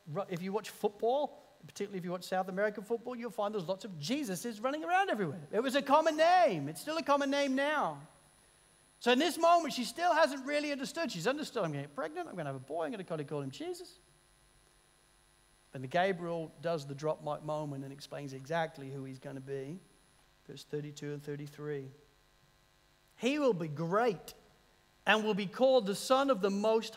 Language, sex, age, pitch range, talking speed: English, male, 50-69, 155-240 Hz, 205 wpm